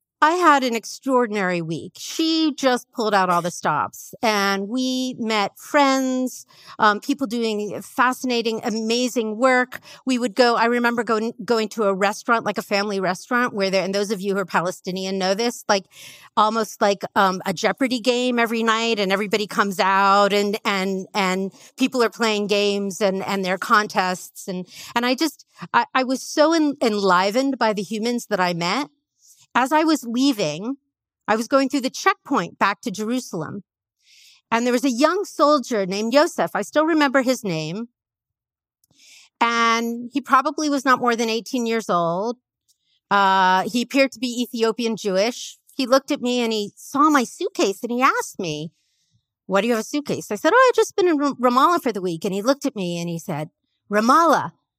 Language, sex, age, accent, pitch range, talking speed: English, female, 50-69, American, 195-260 Hz, 185 wpm